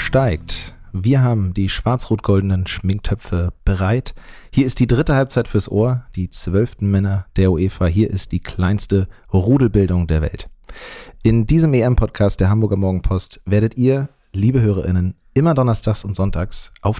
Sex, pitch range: male, 95-125 Hz